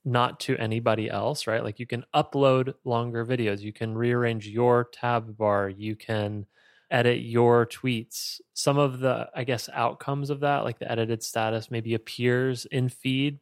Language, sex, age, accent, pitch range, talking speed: English, male, 20-39, American, 105-125 Hz, 170 wpm